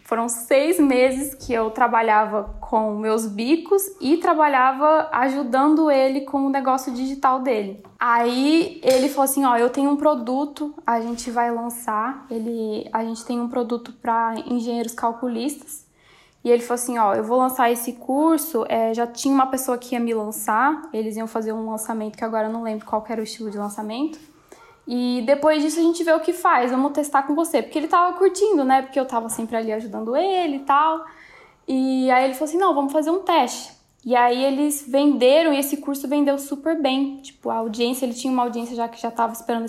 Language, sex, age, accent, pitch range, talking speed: Portuguese, female, 10-29, Brazilian, 230-280 Hz, 205 wpm